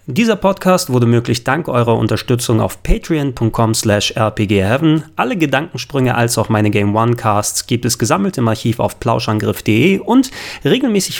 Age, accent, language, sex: 30-49, German, German, male